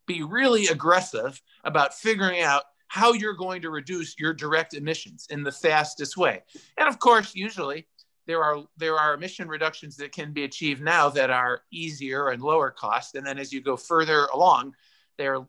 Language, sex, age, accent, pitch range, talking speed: English, male, 50-69, American, 150-205 Hz, 180 wpm